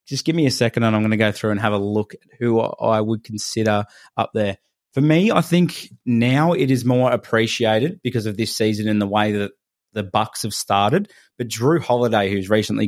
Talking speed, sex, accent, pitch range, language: 225 wpm, male, Australian, 105-125 Hz, English